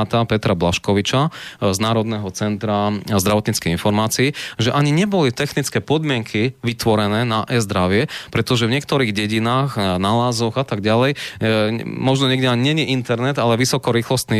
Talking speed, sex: 130 wpm, male